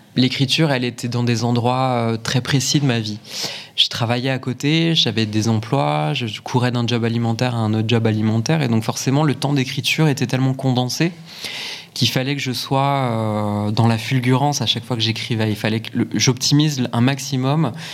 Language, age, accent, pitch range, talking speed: French, 20-39, French, 115-145 Hz, 185 wpm